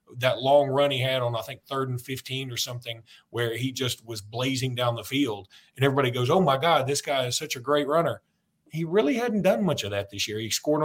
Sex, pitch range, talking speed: male, 125-155 Hz, 250 wpm